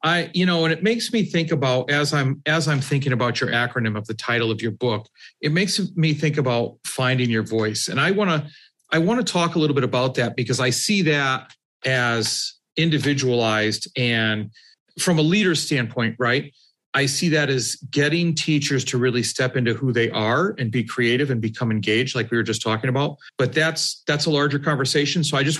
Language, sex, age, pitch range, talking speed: English, male, 40-59, 125-165 Hz, 210 wpm